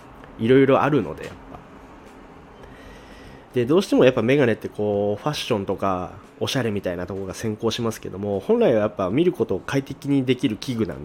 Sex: male